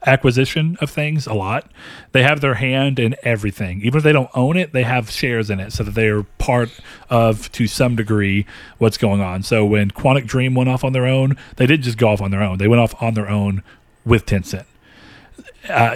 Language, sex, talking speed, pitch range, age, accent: English, male, 225 wpm, 110-145 Hz, 40-59, American